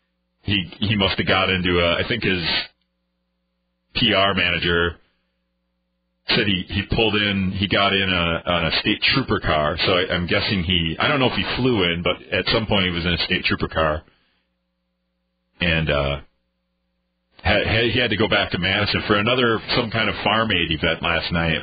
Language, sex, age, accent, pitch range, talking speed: English, male, 40-59, American, 80-115 Hz, 195 wpm